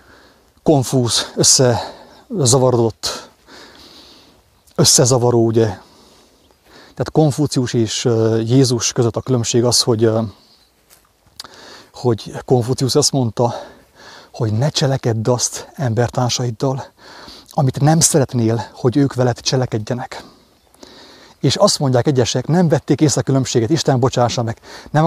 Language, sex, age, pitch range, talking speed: English, male, 30-49, 115-135 Hz, 100 wpm